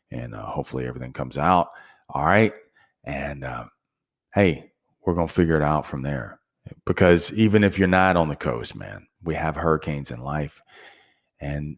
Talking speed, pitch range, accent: 175 wpm, 75-90 Hz, American